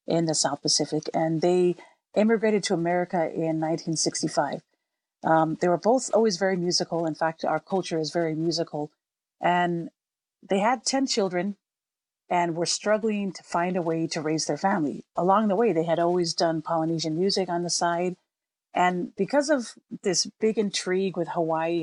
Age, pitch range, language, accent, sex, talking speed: 40-59, 160-190 Hz, English, American, female, 170 wpm